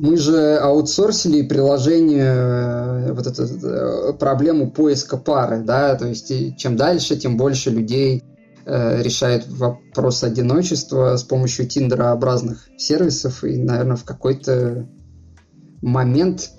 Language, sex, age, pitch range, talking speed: Russian, male, 20-39, 125-155 Hz, 105 wpm